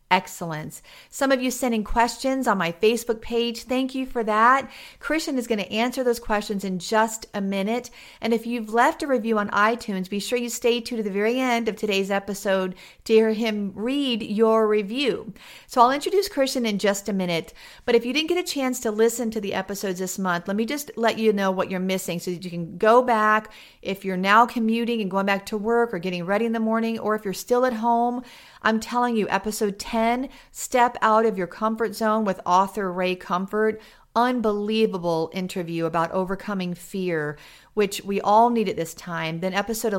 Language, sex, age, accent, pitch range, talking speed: English, female, 40-59, American, 190-235 Hz, 210 wpm